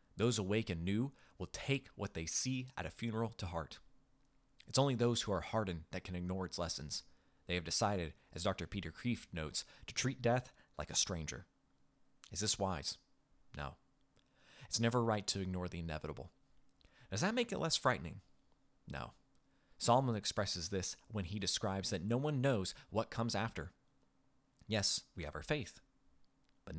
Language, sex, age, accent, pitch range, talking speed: English, male, 30-49, American, 85-115 Hz, 170 wpm